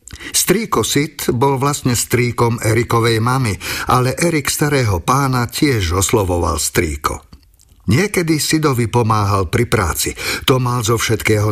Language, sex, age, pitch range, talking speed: Slovak, male, 50-69, 105-140 Hz, 120 wpm